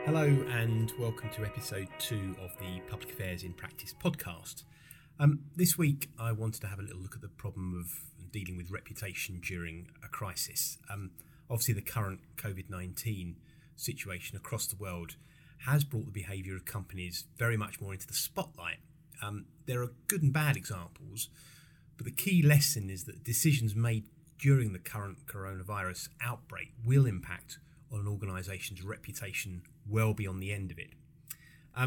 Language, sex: English, male